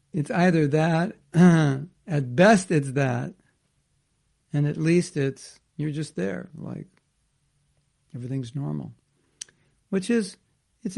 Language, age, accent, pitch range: English, 60-79, American, 135-155 Hz